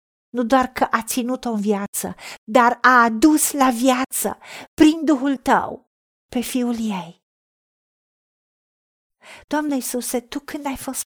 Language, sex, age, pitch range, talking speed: Romanian, female, 50-69, 240-285 Hz, 130 wpm